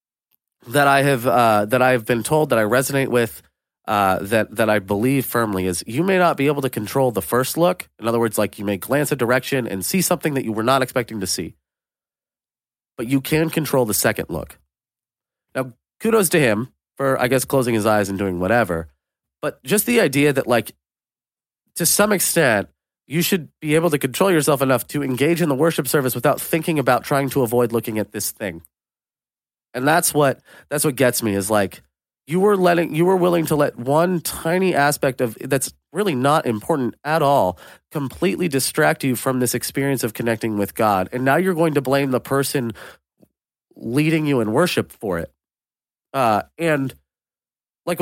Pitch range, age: 115-155 Hz, 30-49